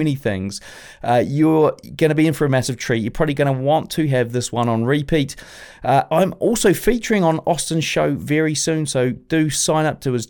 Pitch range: 130-160 Hz